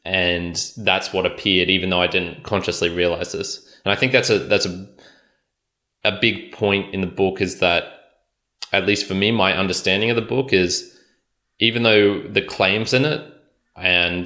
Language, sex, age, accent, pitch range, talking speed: English, male, 20-39, Australian, 90-105 Hz, 180 wpm